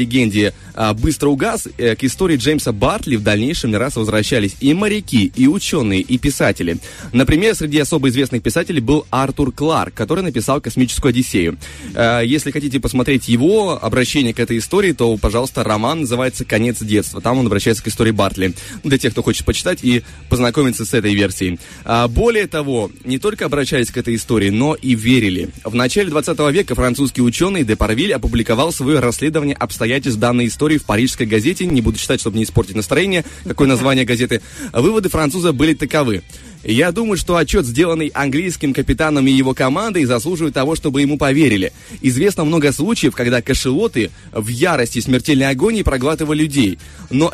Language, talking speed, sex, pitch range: Russian, 160 wpm, male, 115-150 Hz